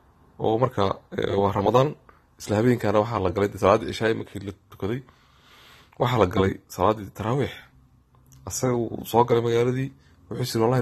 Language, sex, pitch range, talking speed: English, male, 100-120 Hz, 120 wpm